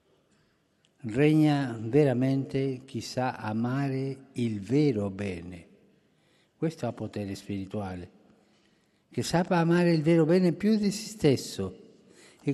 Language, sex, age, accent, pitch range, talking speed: Italian, male, 50-69, native, 115-155 Hz, 110 wpm